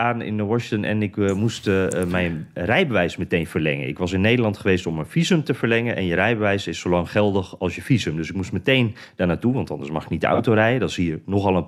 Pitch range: 100-135 Hz